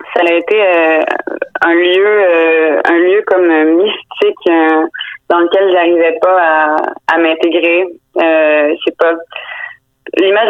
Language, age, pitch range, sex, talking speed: French, 20-39, 155-180 Hz, female, 130 wpm